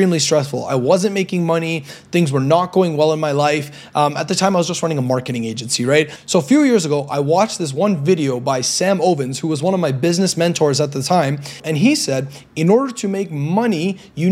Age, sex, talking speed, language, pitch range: 30-49, male, 240 wpm, English, 150-195 Hz